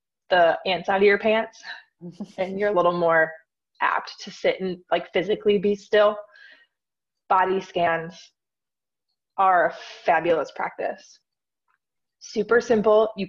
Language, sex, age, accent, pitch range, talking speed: English, female, 20-39, American, 180-225 Hz, 125 wpm